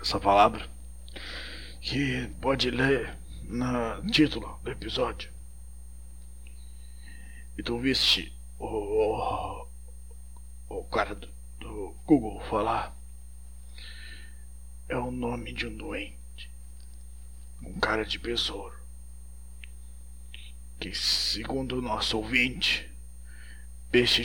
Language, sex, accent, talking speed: Portuguese, male, Brazilian, 90 wpm